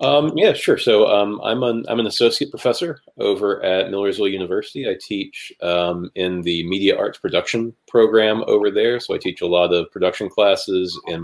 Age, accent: 30-49, American